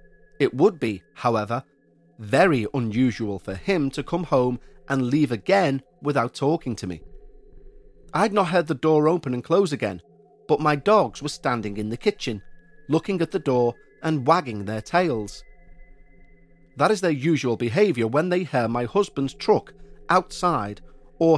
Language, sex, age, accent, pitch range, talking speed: English, male, 40-59, British, 120-175 Hz, 155 wpm